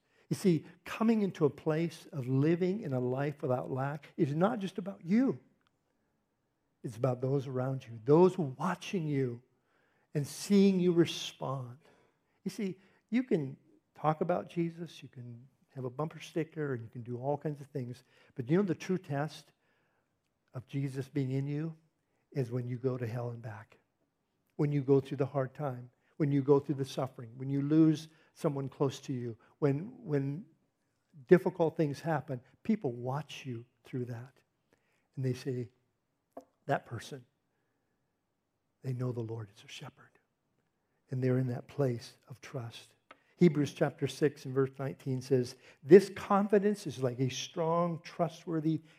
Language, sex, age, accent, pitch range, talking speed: English, male, 50-69, American, 130-165 Hz, 165 wpm